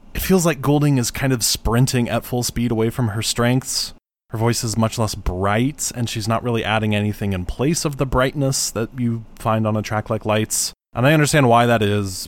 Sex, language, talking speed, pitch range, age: male, English, 225 wpm, 105-130 Hz, 20-39